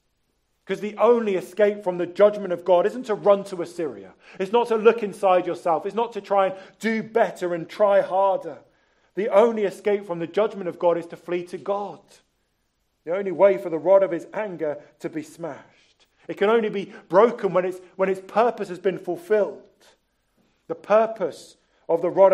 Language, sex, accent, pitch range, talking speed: English, male, British, 165-200 Hz, 195 wpm